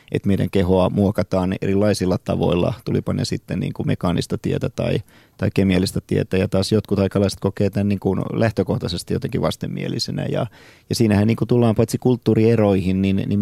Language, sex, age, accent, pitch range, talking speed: Finnish, male, 30-49, native, 95-110 Hz, 170 wpm